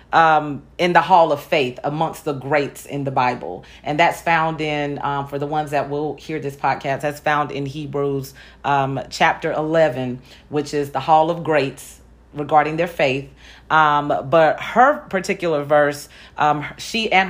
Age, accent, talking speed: 40-59, American, 170 wpm